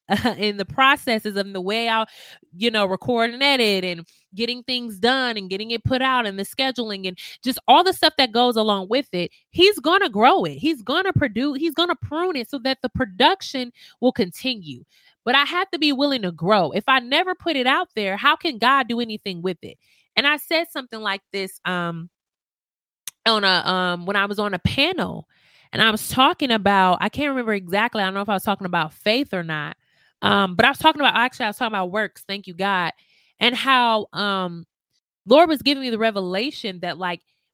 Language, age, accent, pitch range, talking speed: English, 20-39, American, 195-275 Hz, 215 wpm